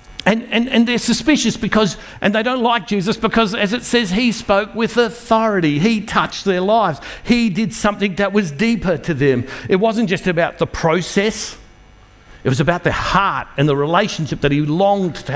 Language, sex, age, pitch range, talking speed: English, male, 50-69, 155-215 Hz, 190 wpm